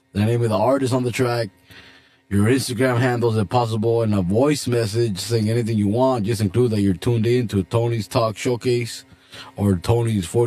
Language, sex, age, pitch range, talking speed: English, male, 20-39, 100-130 Hz, 190 wpm